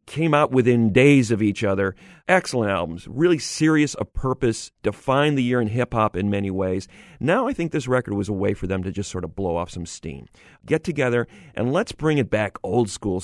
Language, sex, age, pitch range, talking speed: English, male, 40-59, 100-135 Hz, 215 wpm